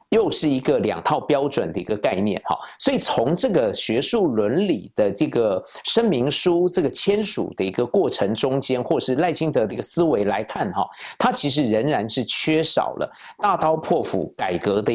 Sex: male